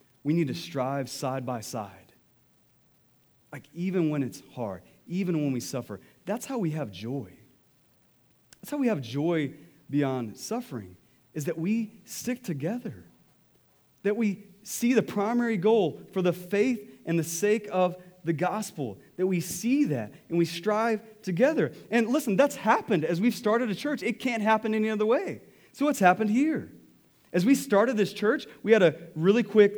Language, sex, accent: English, male, American